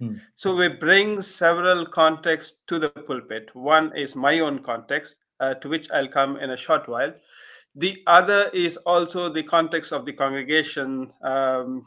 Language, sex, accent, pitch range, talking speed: English, male, Indian, 140-175 Hz, 160 wpm